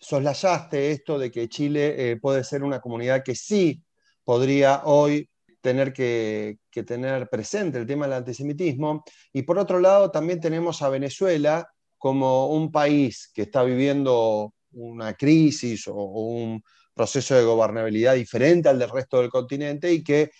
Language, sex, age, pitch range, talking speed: Spanish, male, 30-49, 120-165 Hz, 155 wpm